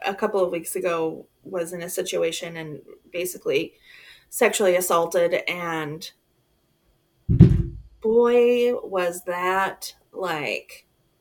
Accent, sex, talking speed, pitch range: American, female, 95 wpm, 180-240 Hz